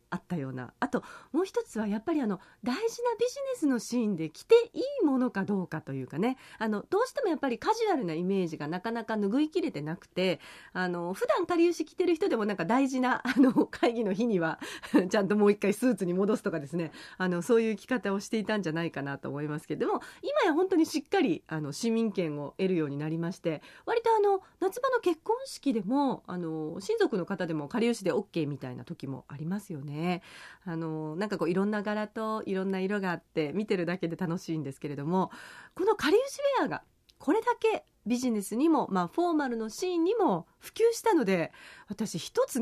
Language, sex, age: Japanese, female, 40-59